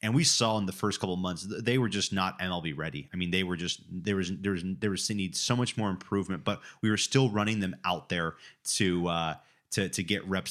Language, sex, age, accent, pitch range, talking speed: English, male, 30-49, American, 90-105 Hz, 250 wpm